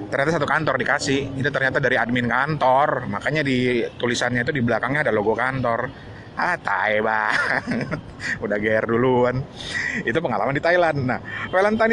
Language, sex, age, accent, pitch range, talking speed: Indonesian, male, 30-49, native, 125-165 Hz, 150 wpm